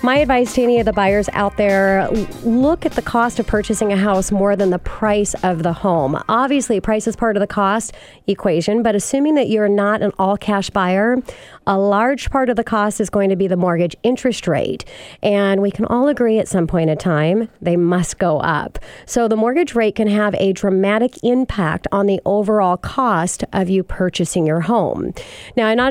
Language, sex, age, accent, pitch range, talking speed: English, female, 40-59, American, 185-230 Hz, 205 wpm